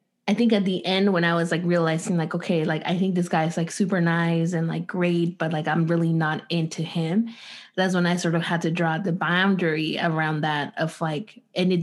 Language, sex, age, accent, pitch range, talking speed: English, female, 20-39, American, 165-195 Hz, 235 wpm